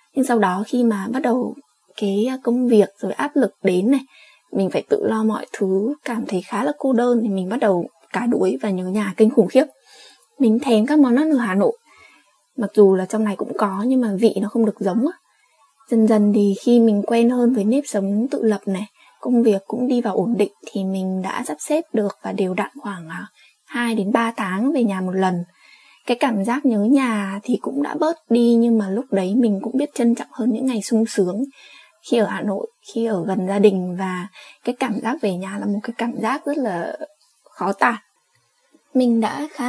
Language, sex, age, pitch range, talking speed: Vietnamese, female, 20-39, 200-255 Hz, 225 wpm